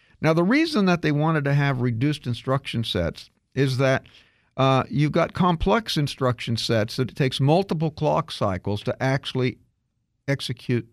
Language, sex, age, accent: English, male, 50-69, American